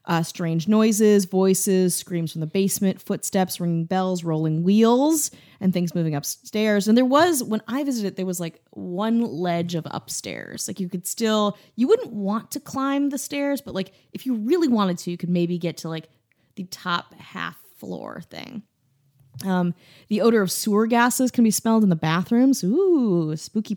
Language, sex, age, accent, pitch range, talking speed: English, female, 20-39, American, 165-225 Hz, 185 wpm